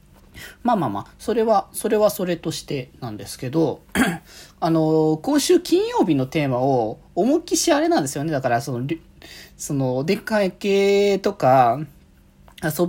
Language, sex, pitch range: Japanese, male, 145-230 Hz